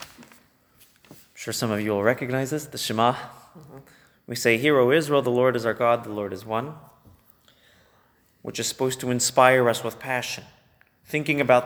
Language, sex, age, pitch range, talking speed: English, male, 30-49, 115-145 Hz, 170 wpm